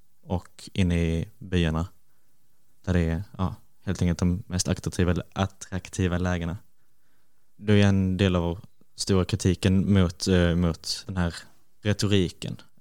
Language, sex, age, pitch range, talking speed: Swedish, male, 20-39, 90-100 Hz, 130 wpm